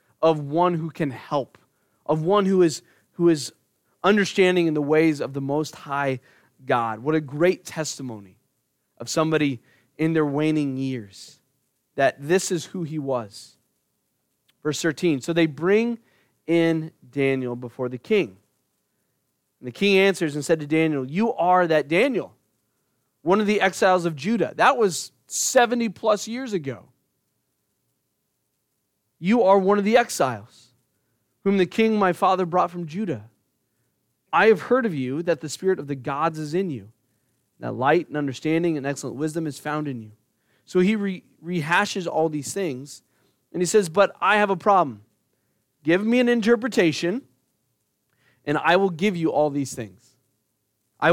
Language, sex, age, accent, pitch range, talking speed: English, male, 30-49, American, 130-185 Hz, 160 wpm